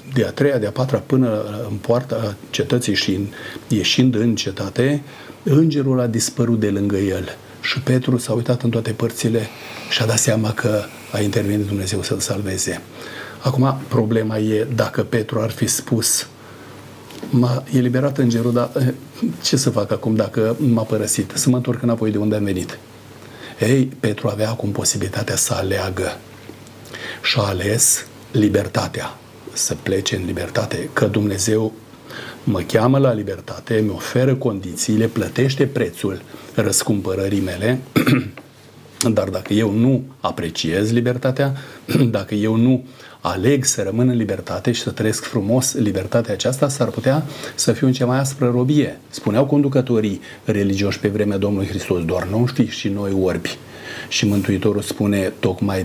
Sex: male